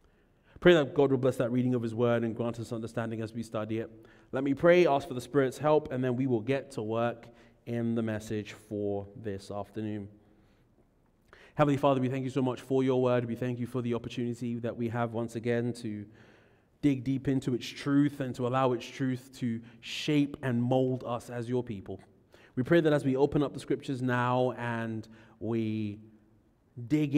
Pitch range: 115-140 Hz